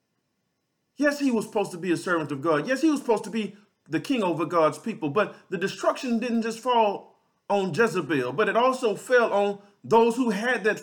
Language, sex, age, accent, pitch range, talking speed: English, male, 40-59, American, 175-235 Hz, 210 wpm